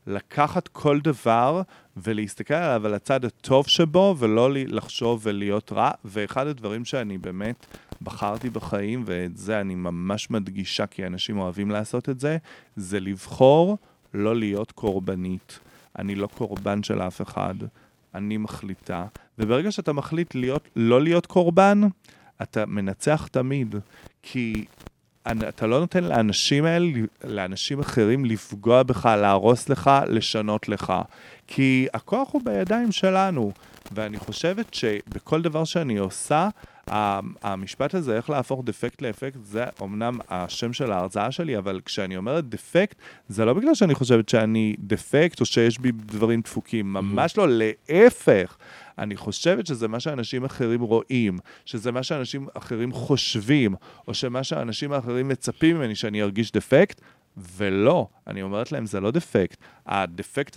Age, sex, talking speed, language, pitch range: 30-49, male, 135 wpm, Hebrew, 105-140 Hz